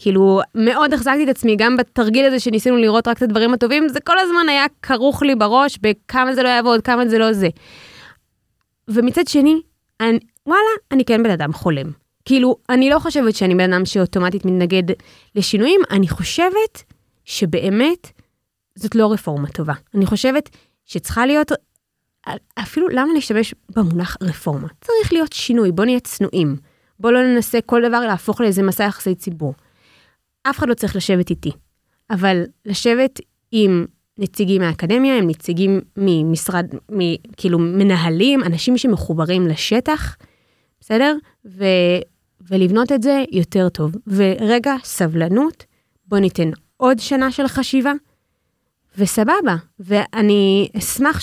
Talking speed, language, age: 135 wpm, Hebrew, 20-39